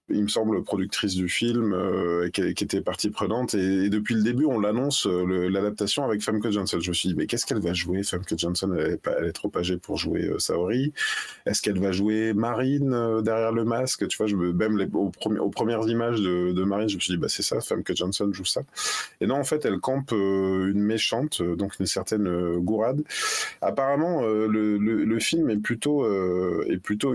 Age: 20-39